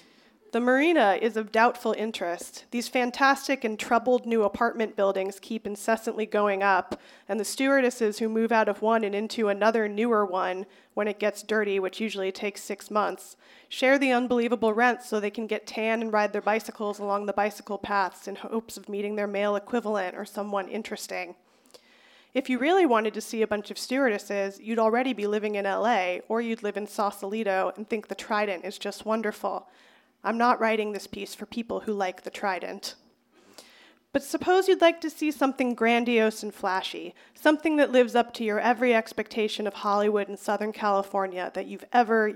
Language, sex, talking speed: English, female, 185 wpm